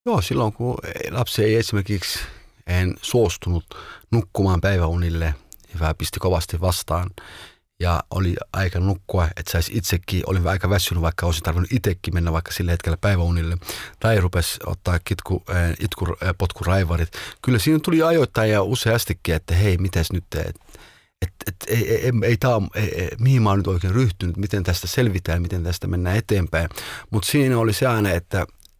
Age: 30-49